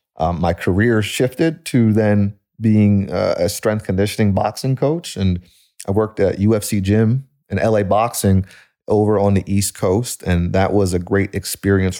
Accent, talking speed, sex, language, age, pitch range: American, 165 wpm, male, English, 30-49, 95-105 Hz